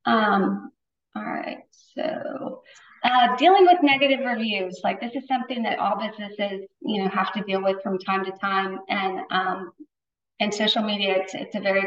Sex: female